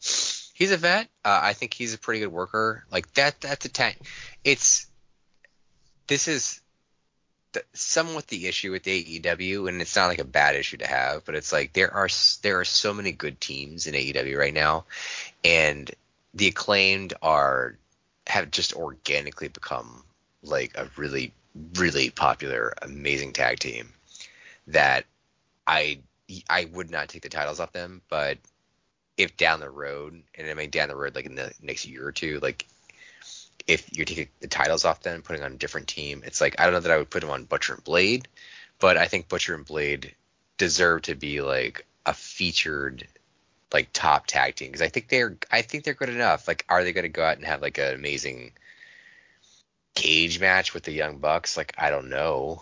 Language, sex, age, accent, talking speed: English, male, 20-39, American, 190 wpm